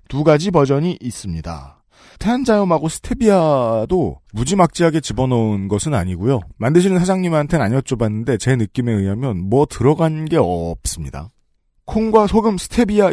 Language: Korean